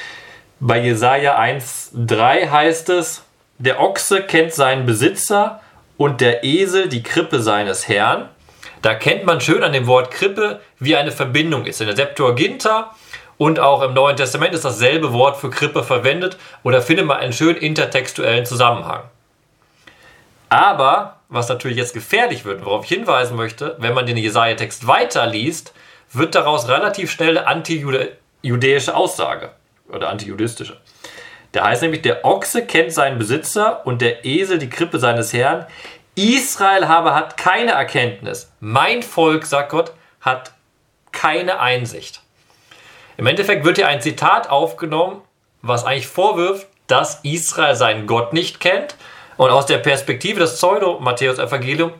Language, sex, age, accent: German, male, 40-59, German